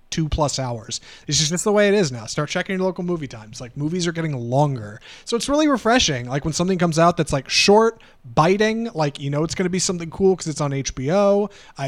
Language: English